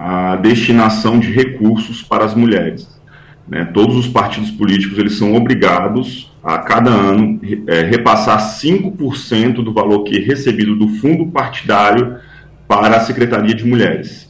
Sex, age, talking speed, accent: male, 40-59, 145 wpm, Brazilian